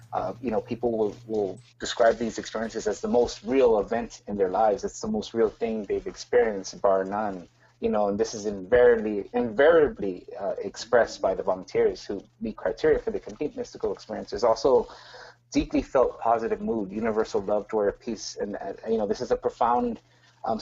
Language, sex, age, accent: English, male, 30-49, American